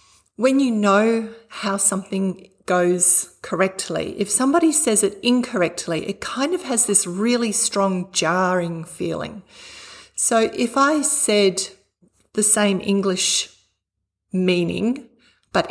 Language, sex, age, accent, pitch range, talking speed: English, female, 40-59, Australian, 170-220 Hz, 115 wpm